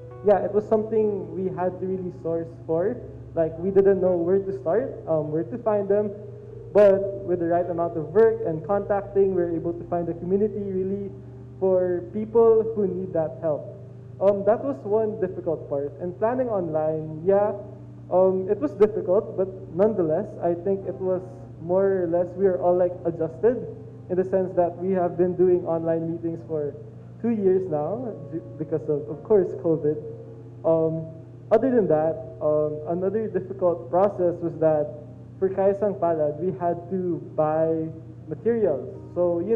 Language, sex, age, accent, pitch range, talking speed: Filipino, male, 20-39, native, 155-190 Hz, 170 wpm